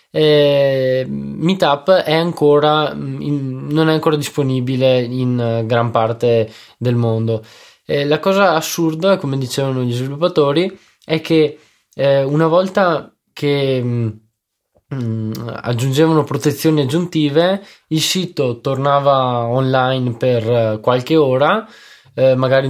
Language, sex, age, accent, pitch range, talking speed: Italian, male, 20-39, native, 125-155 Hz, 110 wpm